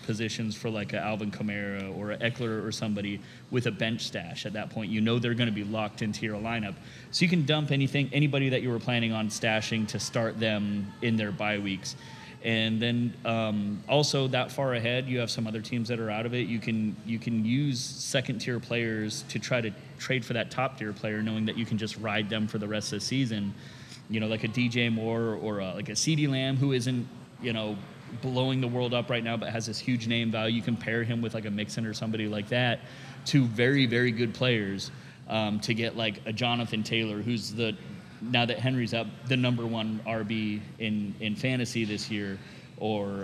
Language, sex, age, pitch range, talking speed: English, male, 30-49, 110-125 Hz, 225 wpm